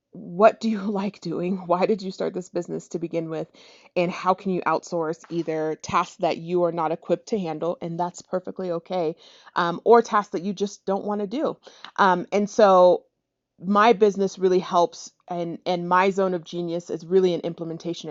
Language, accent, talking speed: English, American, 190 wpm